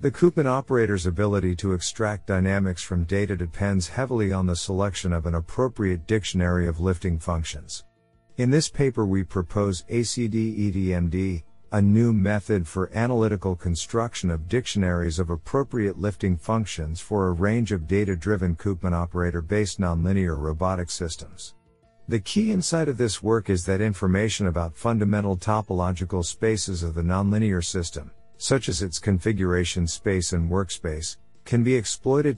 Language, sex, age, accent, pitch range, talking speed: English, male, 50-69, American, 90-110 Hz, 140 wpm